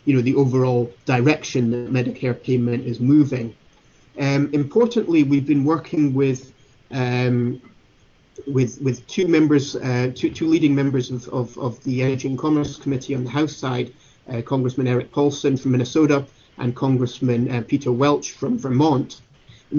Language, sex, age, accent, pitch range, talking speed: English, male, 30-49, British, 125-140 Hz, 160 wpm